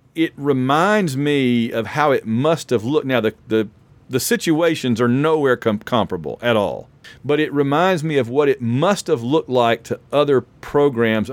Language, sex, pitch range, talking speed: English, male, 120-155 Hz, 180 wpm